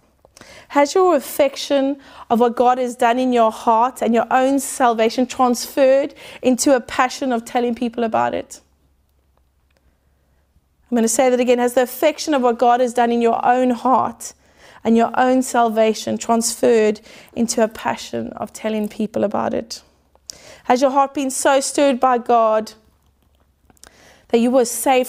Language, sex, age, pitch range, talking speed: English, female, 30-49, 220-255 Hz, 160 wpm